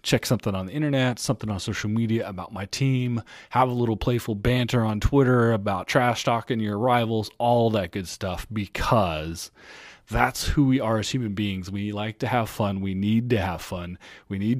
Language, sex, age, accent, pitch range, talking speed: English, male, 30-49, American, 100-130 Hz, 195 wpm